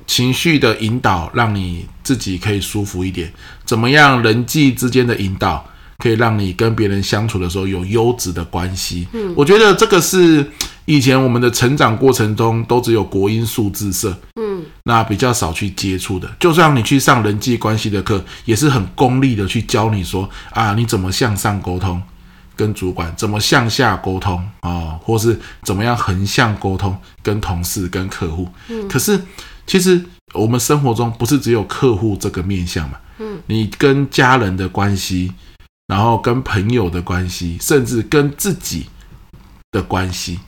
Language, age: Chinese, 20-39